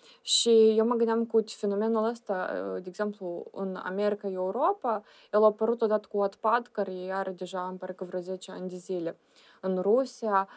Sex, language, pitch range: female, Romanian, 190-225 Hz